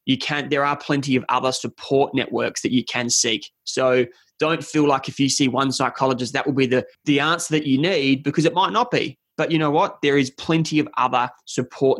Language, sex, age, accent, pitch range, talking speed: English, male, 20-39, Australian, 130-155 Hz, 225 wpm